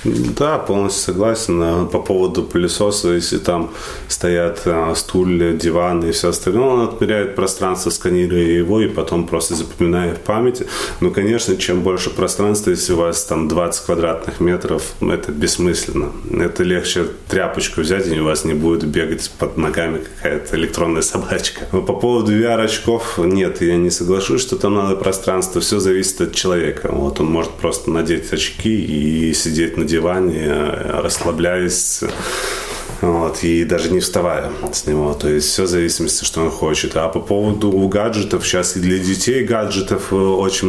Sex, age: male, 30-49